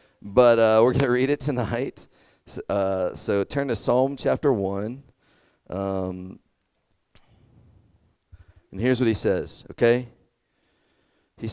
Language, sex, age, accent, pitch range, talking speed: English, male, 40-59, American, 95-120 Hz, 115 wpm